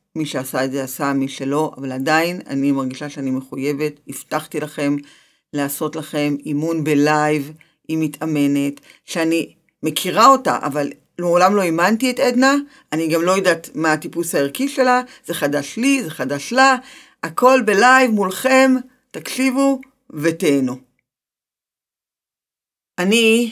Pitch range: 150-210 Hz